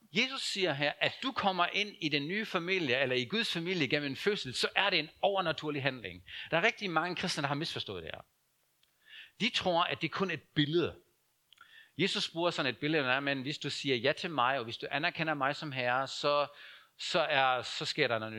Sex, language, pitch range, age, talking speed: male, Danish, 150-210 Hz, 60-79, 220 wpm